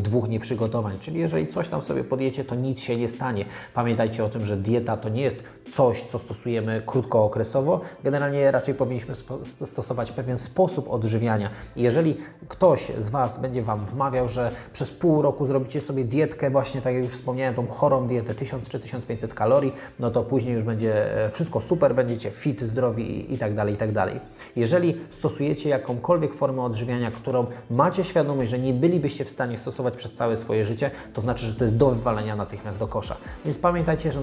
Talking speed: 185 wpm